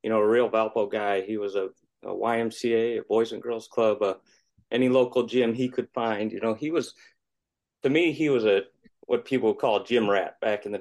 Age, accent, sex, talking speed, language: 30-49, American, male, 230 wpm, English